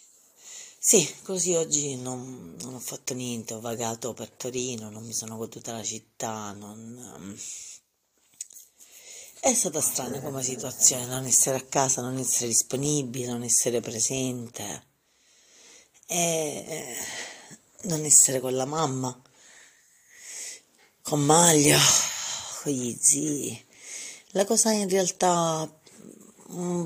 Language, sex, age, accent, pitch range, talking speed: Italian, female, 40-59, native, 125-150 Hz, 110 wpm